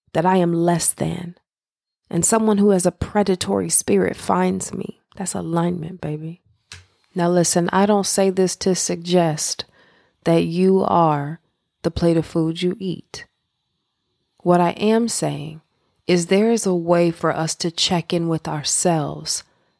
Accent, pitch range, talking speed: American, 160-190 Hz, 150 wpm